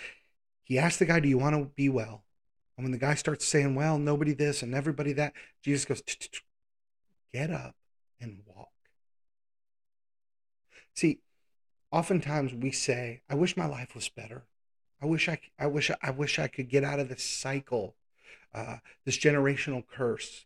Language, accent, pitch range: English, American, 125-155 Hz